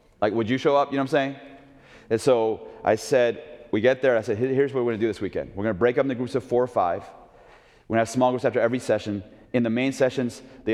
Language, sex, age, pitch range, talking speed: English, male, 30-49, 105-130 Hz, 290 wpm